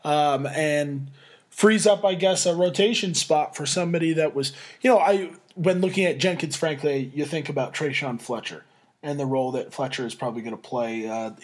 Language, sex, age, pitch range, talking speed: English, male, 20-39, 135-185 Hz, 195 wpm